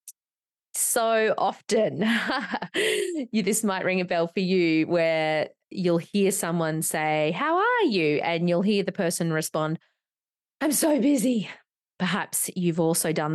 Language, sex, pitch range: English, female, 160-215 Hz